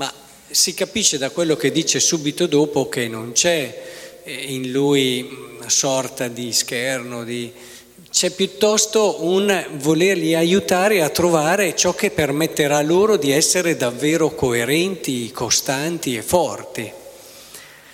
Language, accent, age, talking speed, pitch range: Italian, native, 40-59, 120 wpm, 125-185 Hz